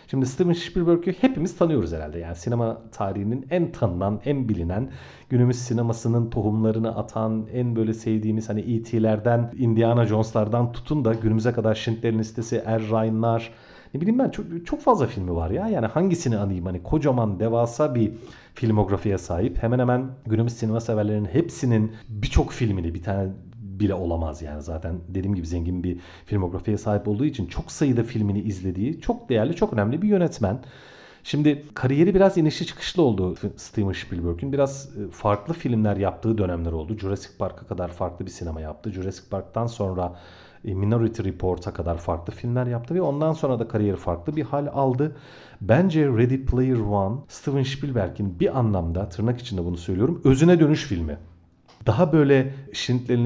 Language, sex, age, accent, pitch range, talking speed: Turkish, male, 40-59, native, 100-130 Hz, 155 wpm